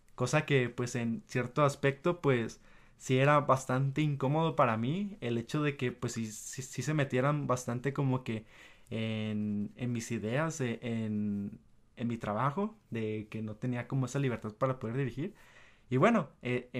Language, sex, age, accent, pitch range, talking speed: Spanish, male, 20-39, Mexican, 115-140 Hz, 170 wpm